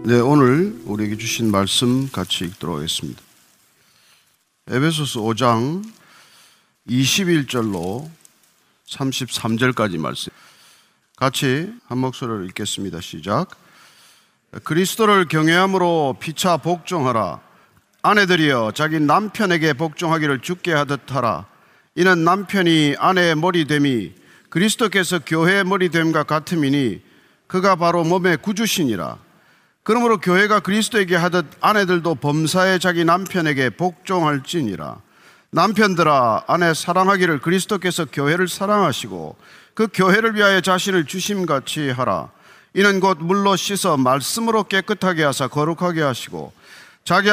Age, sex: 40-59, male